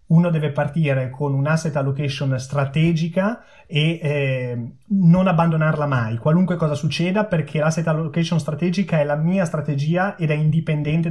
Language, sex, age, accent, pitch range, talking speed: Italian, male, 30-49, native, 135-165 Hz, 145 wpm